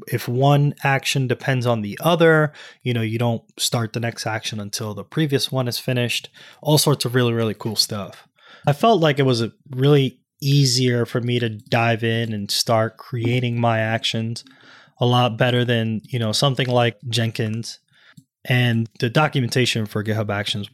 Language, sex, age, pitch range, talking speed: English, male, 20-39, 115-135 Hz, 175 wpm